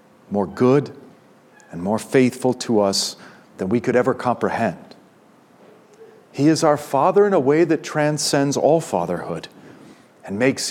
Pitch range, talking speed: 110-145 Hz, 140 wpm